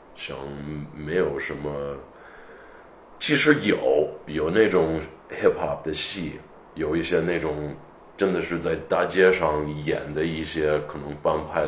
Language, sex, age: Chinese, male, 20-39